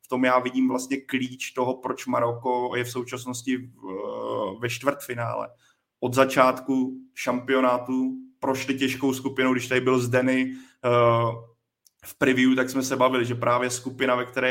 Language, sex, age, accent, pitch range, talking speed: Czech, male, 20-39, native, 125-130 Hz, 150 wpm